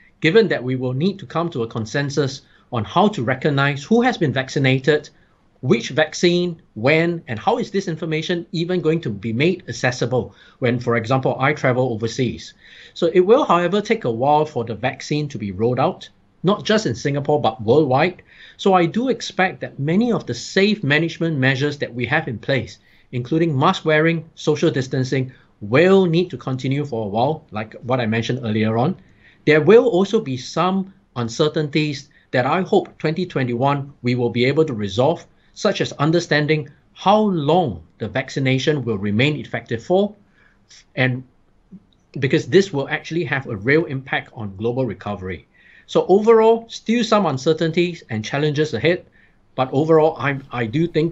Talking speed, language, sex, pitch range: 170 wpm, English, male, 125-170 Hz